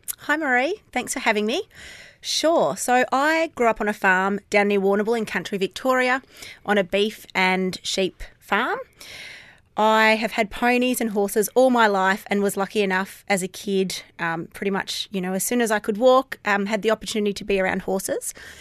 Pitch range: 190-230 Hz